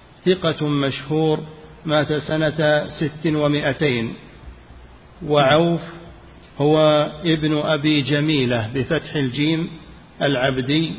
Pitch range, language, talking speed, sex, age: 140-160 Hz, Arabic, 75 wpm, male, 50-69